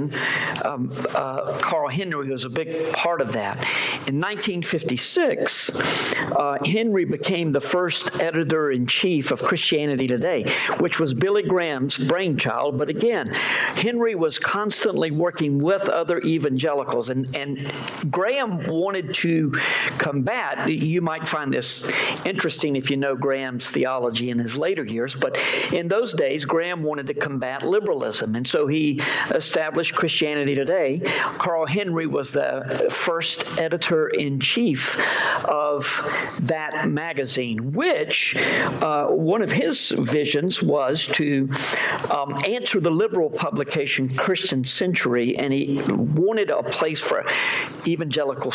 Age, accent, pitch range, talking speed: 50-69, American, 135-170 Hz, 125 wpm